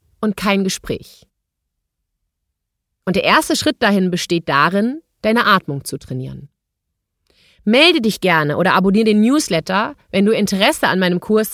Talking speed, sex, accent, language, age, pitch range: 140 wpm, female, German, German, 30-49, 170-240 Hz